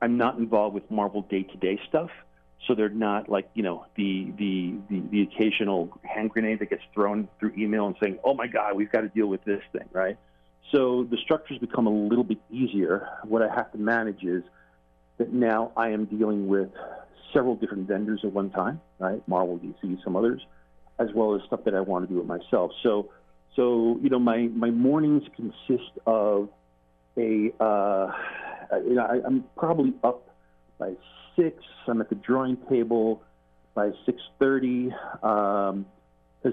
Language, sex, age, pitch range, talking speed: English, male, 50-69, 95-120 Hz, 175 wpm